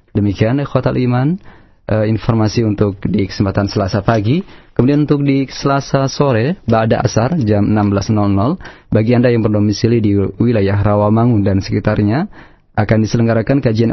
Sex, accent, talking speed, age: male, native, 135 wpm, 30-49